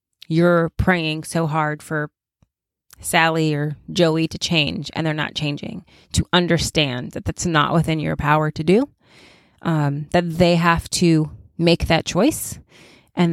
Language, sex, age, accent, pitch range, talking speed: English, female, 30-49, American, 155-190 Hz, 150 wpm